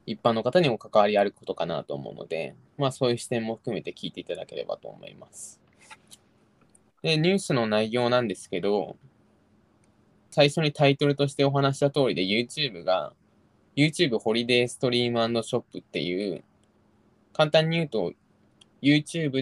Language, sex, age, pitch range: Japanese, male, 20-39, 105-140 Hz